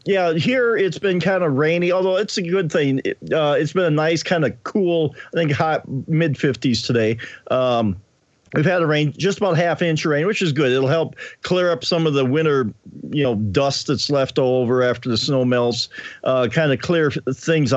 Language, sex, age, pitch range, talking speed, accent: English, male, 50-69, 125-165 Hz, 210 wpm, American